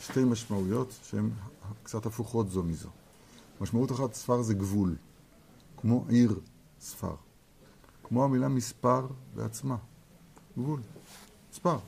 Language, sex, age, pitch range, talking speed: Hebrew, male, 50-69, 105-145 Hz, 105 wpm